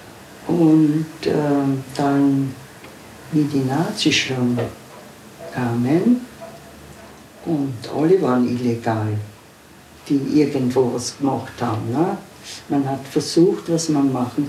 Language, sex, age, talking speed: German, female, 60-79, 100 wpm